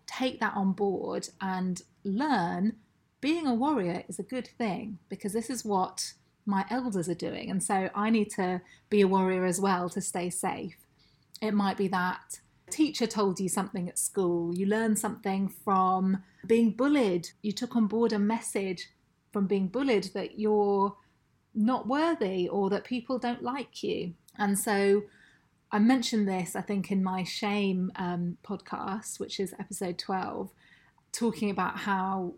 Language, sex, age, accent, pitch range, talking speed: English, female, 30-49, British, 185-220 Hz, 165 wpm